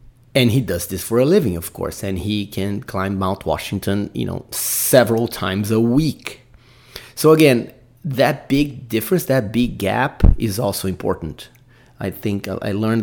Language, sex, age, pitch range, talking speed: English, male, 30-49, 95-120 Hz, 165 wpm